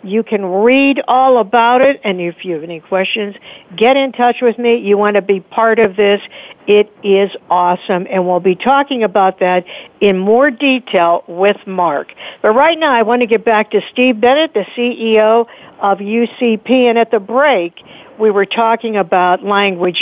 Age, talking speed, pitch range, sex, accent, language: 60-79, 185 wpm, 190-235 Hz, female, American, English